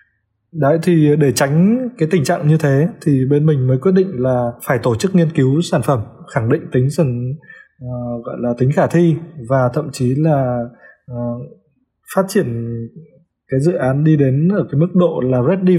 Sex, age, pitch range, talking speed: male, 20-39, 130-165 Hz, 195 wpm